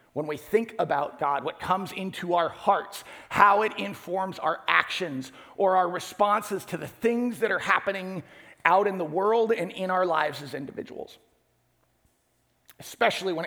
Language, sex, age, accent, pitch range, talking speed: English, male, 40-59, American, 160-225 Hz, 160 wpm